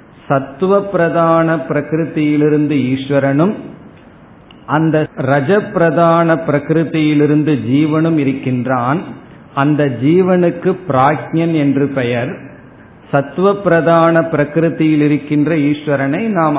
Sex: male